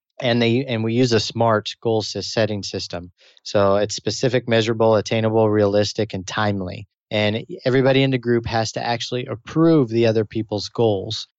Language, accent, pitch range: English, American, 100-115 Hz